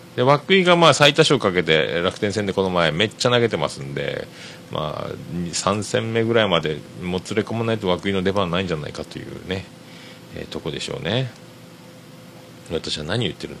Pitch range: 95-150 Hz